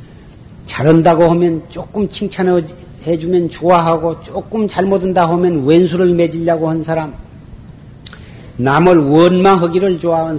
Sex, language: male, Korean